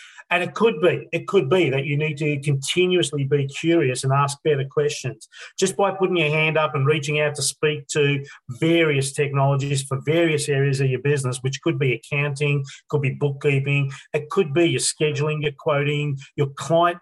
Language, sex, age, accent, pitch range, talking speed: English, male, 40-59, Australian, 135-160 Hz, 190 wpm